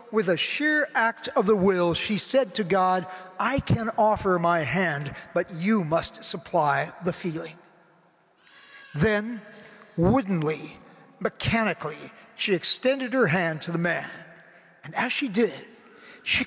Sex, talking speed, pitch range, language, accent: male, 135 wpm, 175-230 Hz, English, American